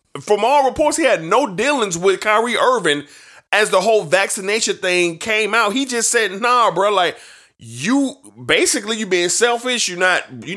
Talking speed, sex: 175 wpm, male